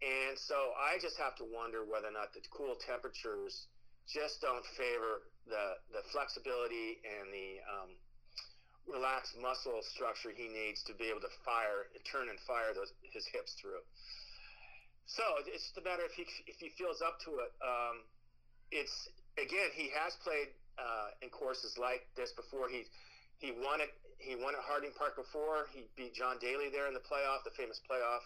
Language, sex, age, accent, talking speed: English, male, 50-69, American, 185 wpm